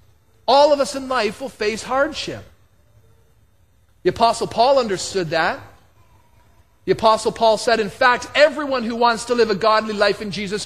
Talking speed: 165 wpm